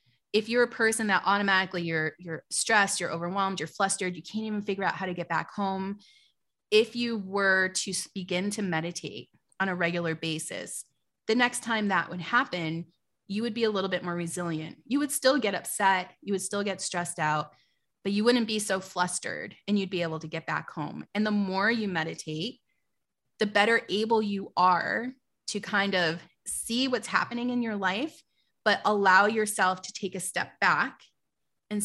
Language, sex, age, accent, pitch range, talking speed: English, female, 30-49, American, 175-210 Hz, 190 wpm